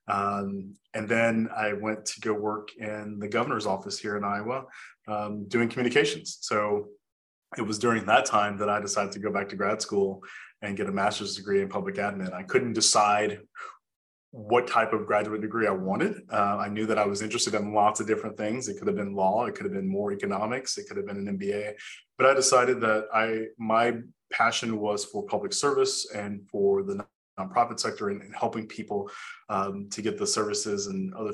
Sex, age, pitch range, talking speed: male, 30-49, 100-115 Hz, 205 wpm